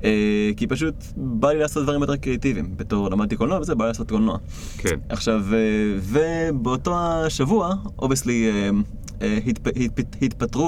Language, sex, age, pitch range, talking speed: Hebrew, male, 20-39, 105-135 Hz, 125 wpm